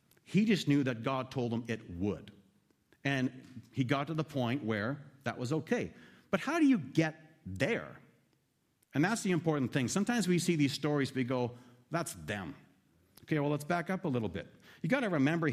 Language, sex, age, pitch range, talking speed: English, male, 50-69, 125-170 Hz, 195 wpm